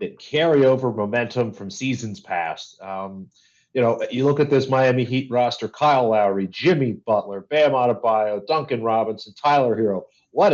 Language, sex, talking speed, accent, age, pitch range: English, male, 160 wpm, American, 40-59, 105-130 Hz